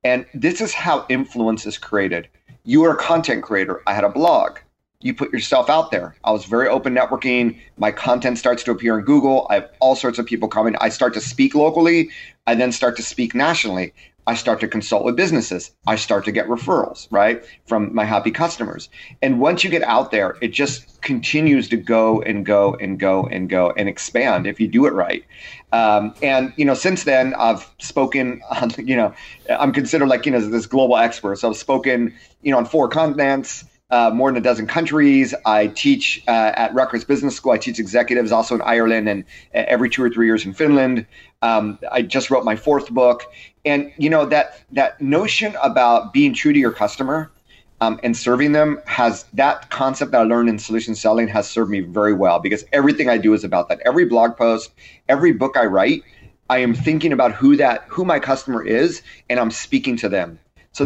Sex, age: male, 30-49